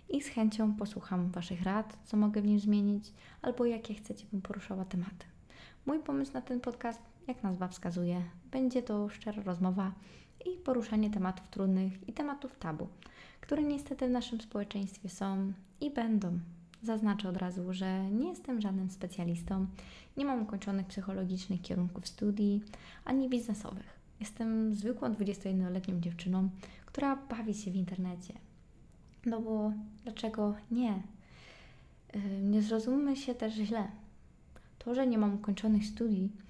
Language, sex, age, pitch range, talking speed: Polish, female, 20-39, 190-240 Hz, 140 wpm